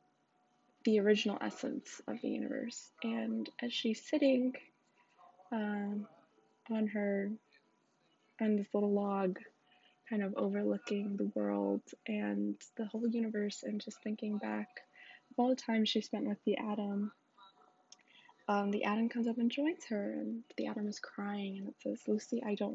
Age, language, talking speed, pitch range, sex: 20-39, English, 155 wpm, 205-235 Hz, female